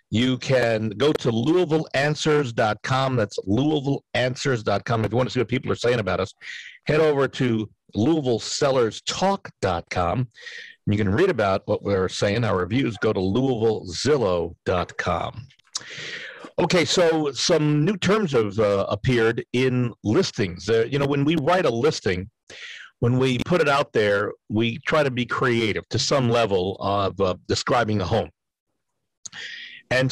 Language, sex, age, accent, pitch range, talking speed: English, male, 50-69, American, 110-150 Hz, 145 wpm